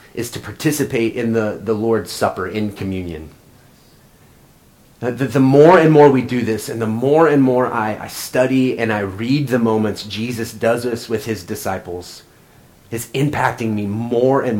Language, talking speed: English, 175 wpm